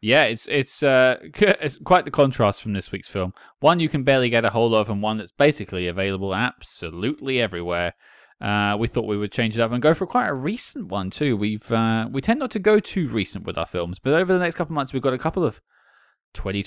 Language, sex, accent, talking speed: English, male, British, 245 wpm